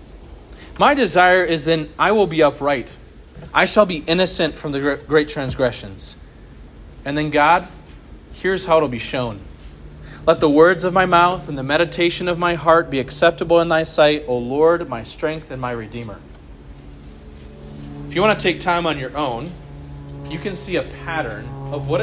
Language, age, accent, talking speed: English, 30-49, American, 175 wpm